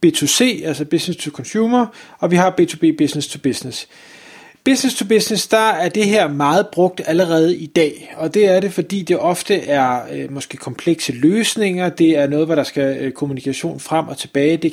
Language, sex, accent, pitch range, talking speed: Danish, male, native, 150-185 Hz, 195 wpm